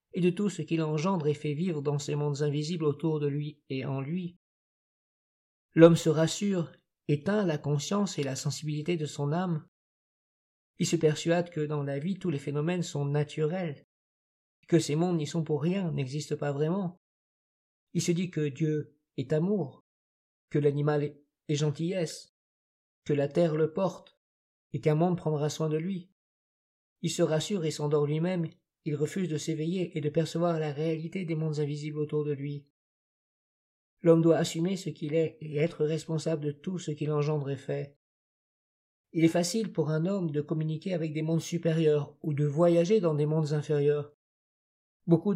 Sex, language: male, French